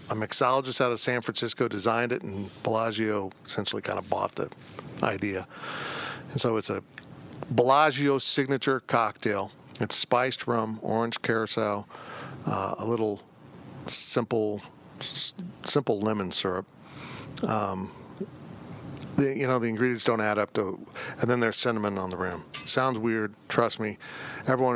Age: 50-69